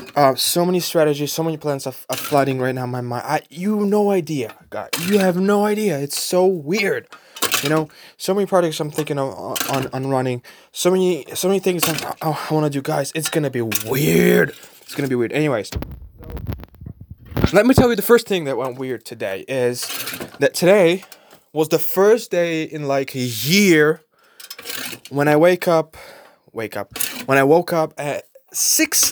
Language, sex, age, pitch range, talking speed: English, male, 20-39, 135-185 Hz, 195 wpm